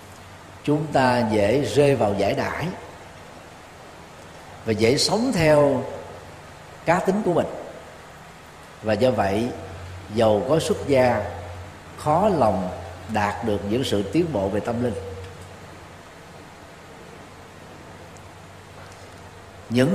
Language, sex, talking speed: Vietnamese, male, 100 wpm